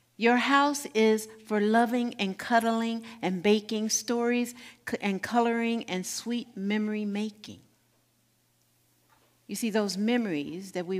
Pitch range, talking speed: 195-240 Hz, 120 wpm